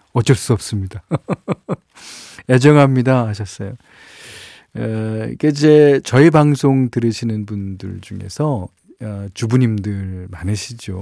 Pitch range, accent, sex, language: 105-140 Hz, native, male, Korean